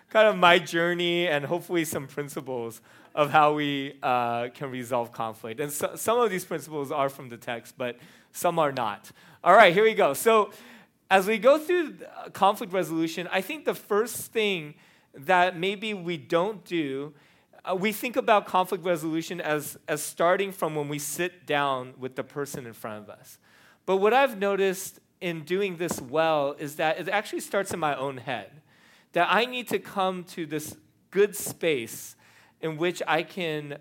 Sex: male